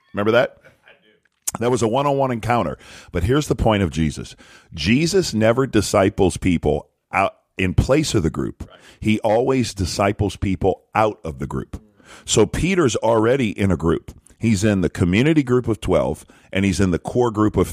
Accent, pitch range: American, 80-105 Hz